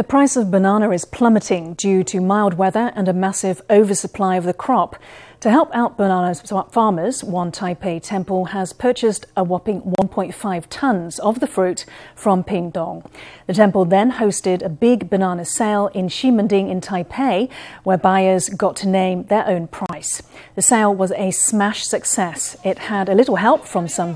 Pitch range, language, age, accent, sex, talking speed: 185-215 Hz, English, 40-59, British, female, 170 wpm